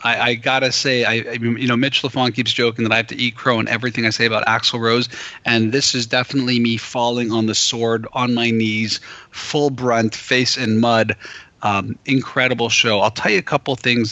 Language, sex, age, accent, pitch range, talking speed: English, male, 30-49, American, 110-130 Hz, 215 wpm